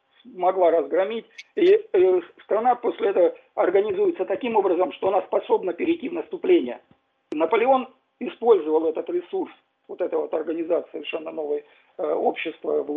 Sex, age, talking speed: male, 50-69, 120 wpm